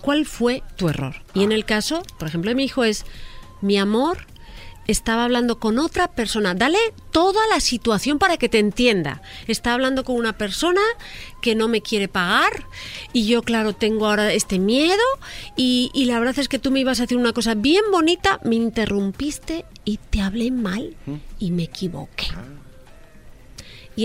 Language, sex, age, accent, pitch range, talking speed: Spanish, female, 40-59, Spanish, 210-300 Hz, 175 wpm